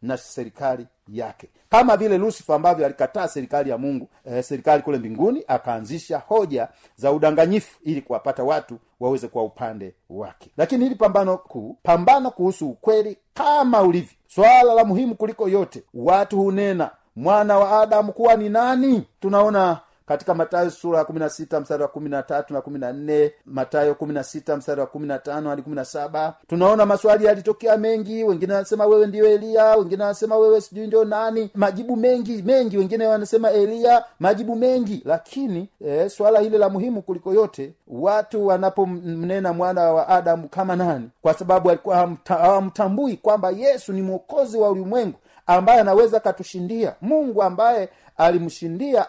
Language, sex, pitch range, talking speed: Swahili, male, 155-215 Hz, 150 wpm